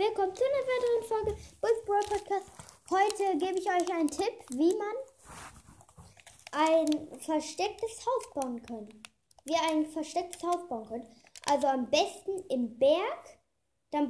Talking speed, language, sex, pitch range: 140 wpm, German, female, 300-385 Hz